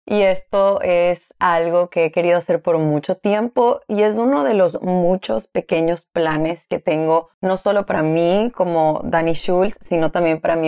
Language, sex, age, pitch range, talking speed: Spanish, female, 20-39, 160-185 Hz, 180 wpm